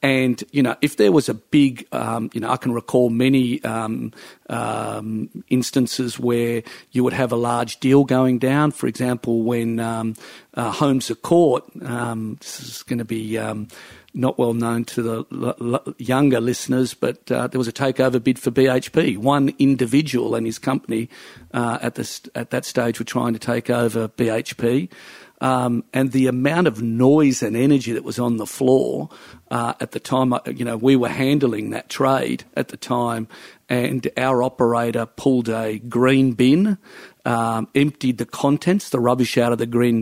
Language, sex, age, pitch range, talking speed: English, male, 50-69, 115-130 Hz, 185 wpm